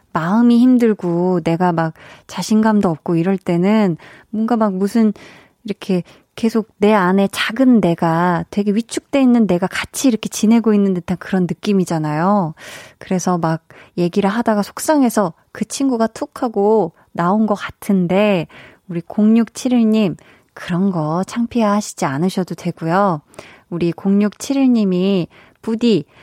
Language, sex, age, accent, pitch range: Korean, female, 20-39, native, 175-220 Hz